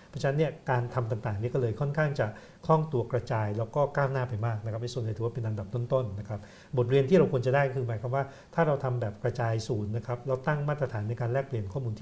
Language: Thai